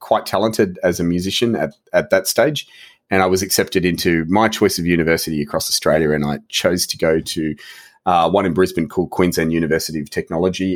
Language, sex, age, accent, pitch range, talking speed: English, male, 30-49, Australian, 80-95 Hz, 195 wpm